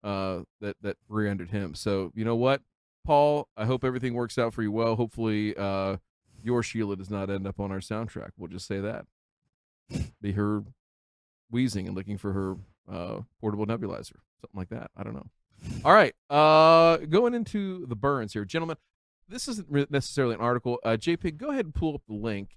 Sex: male